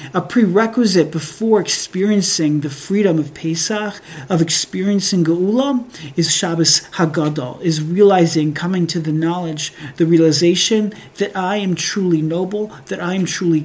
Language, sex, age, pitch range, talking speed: English, male, 40-59, 165-205 Hz, 135 wpm